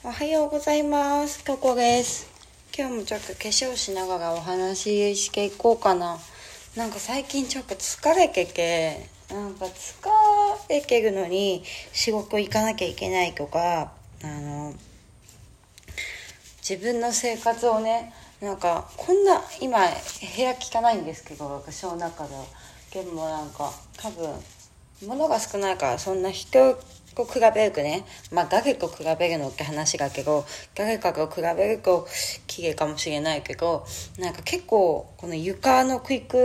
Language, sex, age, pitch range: Japanese, female, 20-39, 155-230 Hz